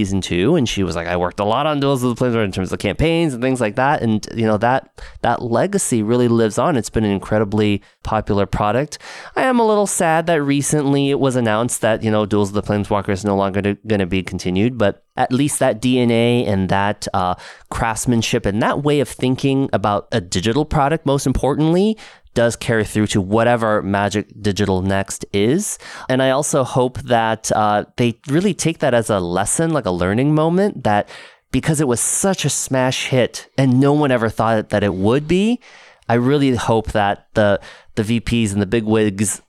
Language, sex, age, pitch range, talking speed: English, male, 20-39, 105-130 Hz, 210 wpm